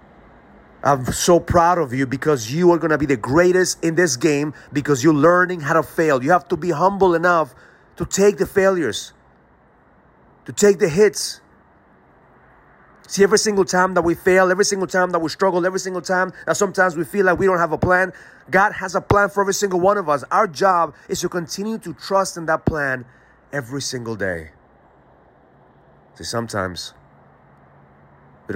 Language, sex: English, male